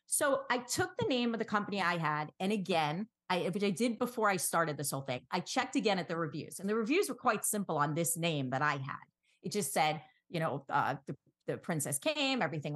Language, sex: English, female